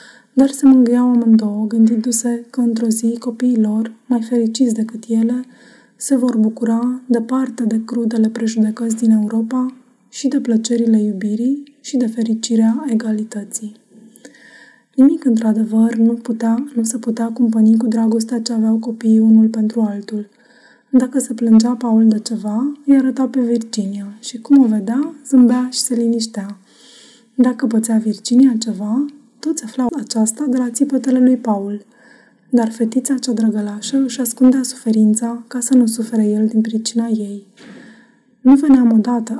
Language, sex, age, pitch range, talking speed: Romanian, female, 20-39, 220-250 Hz, 145 wpm